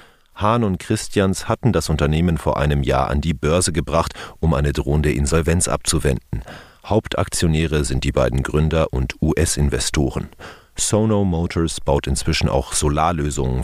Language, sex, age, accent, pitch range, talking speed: German, male, 40-59, German, 70-90 Hz, 135 wpm